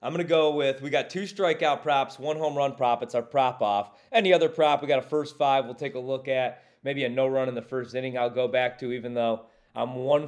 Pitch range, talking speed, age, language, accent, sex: 125-150 Hz, 275 wpm, 30-49, English, American, male